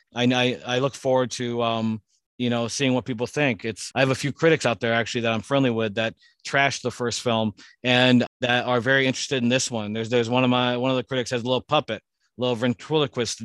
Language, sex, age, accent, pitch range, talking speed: English, male, 40-59, American, 115-130 Hz, 235 wpm